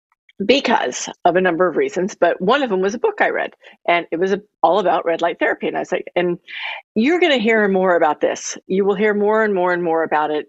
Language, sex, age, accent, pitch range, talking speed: English, female, 50-69, American, 165-225 Hz, 255 wpm